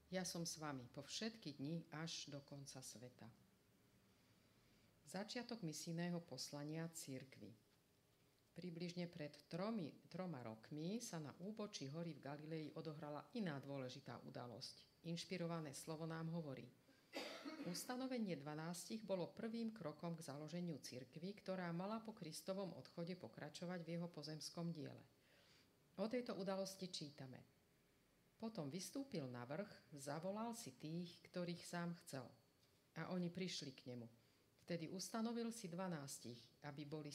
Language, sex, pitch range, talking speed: Slovak, female, 140-180 Hz, 125 wpm